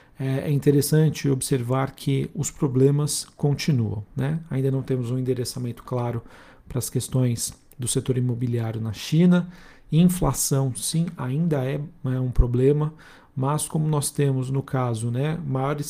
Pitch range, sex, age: 130-145 Hz, male, 40-59